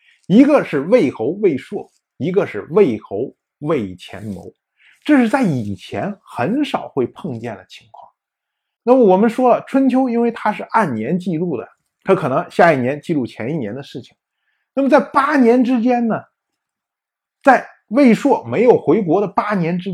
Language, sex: Chinese, male